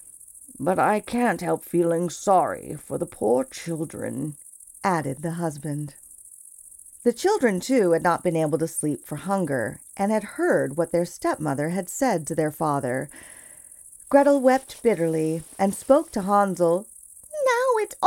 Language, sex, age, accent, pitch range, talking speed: English, female, 40-59, American, 170-260 Hz, 145 wpm